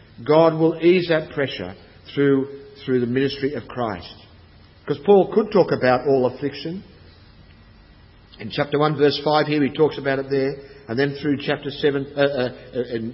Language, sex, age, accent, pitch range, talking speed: English, male, 50-69, Australian, 120-165 Hz, 170 wpm